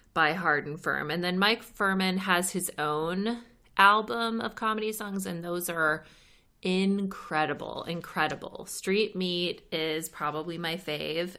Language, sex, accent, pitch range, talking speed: English, female, American, 155-195 Hz, 135 wpm